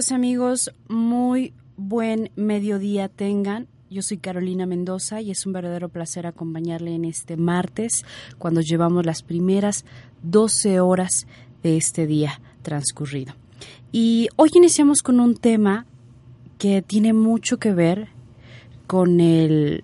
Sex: female